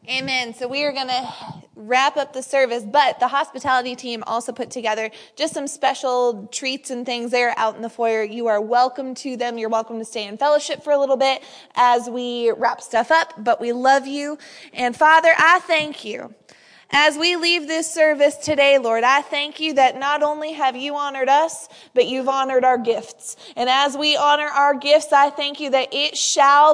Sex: female